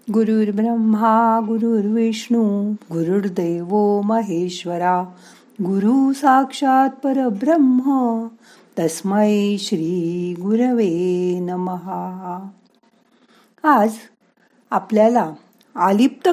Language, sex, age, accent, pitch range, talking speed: Marathi, female, 60-79, native, 180-235 Hz, 50 wpm